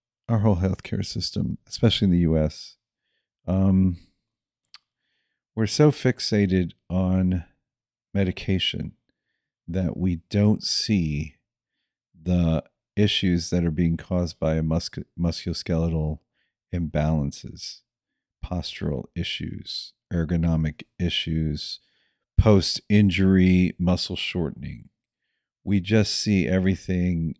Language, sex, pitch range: English, male, 85-100 Hz